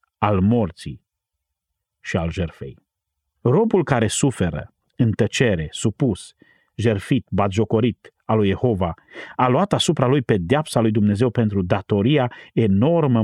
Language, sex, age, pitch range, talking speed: Romanian, male, 40-59, 95-125 Hz, 120 wpm